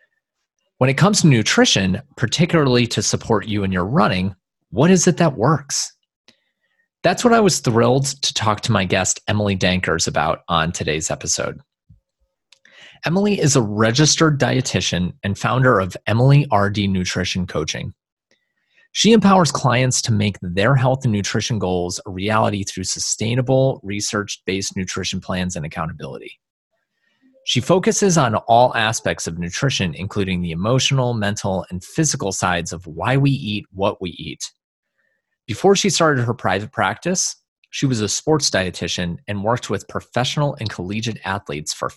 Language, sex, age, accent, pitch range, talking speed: English, male, 30-49, American, 95-140 Hz, 150 wpm